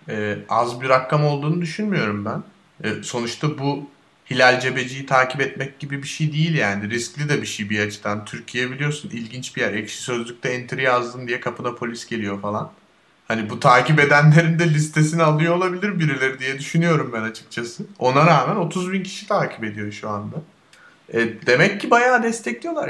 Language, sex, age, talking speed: Turkish, male, 30-49, 175 wpm